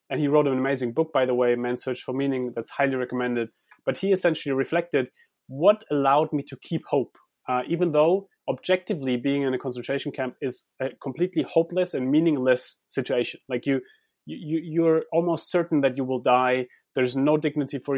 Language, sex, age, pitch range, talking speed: English, male, 30-49, 130-165 Hz, 190 wpm